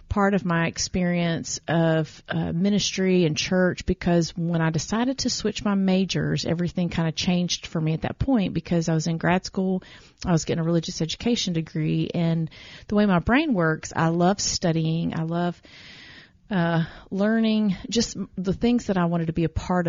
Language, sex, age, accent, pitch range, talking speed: English, female, 30-49, American, 160-185 Hz, 185 wpm